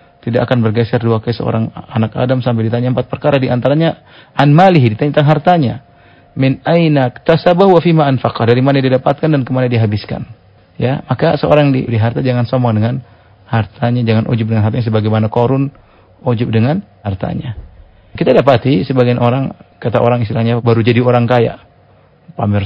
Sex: male